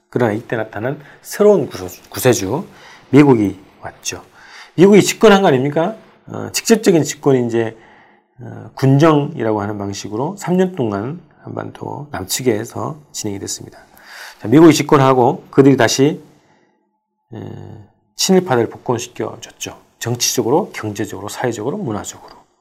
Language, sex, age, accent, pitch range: Korean, male, 40-59, native, 115-165 Hz